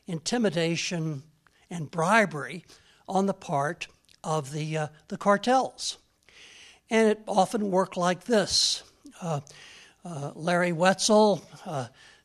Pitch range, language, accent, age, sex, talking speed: 150-195 Hz, English, American, 60-79, male, 110 wpm